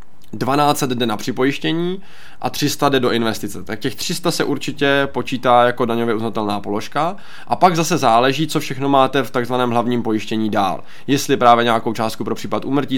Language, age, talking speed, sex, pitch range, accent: Czech, 20-39, 175 wpm, male, 105-130 Hz, native